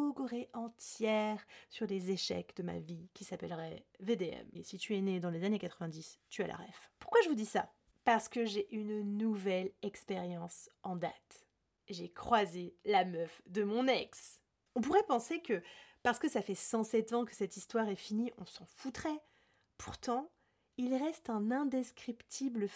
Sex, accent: female, French